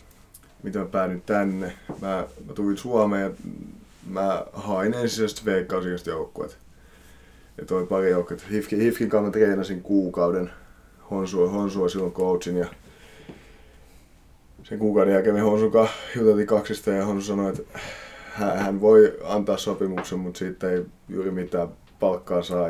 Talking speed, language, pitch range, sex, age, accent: 130 wpm, Finnish, 85-100 Hz, male, 30-49, native